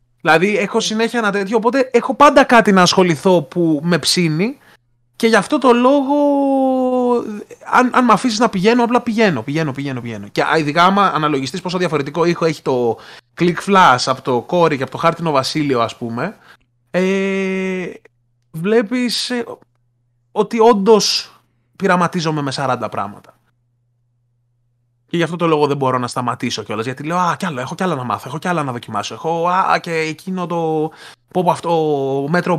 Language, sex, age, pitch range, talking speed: Greek, male, 20-39, 125-190 Hz, 170 wpm